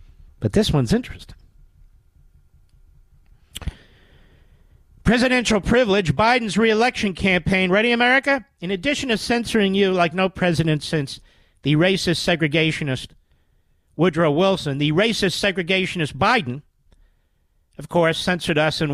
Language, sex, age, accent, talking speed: English, male, 50-69, American, 110 wpm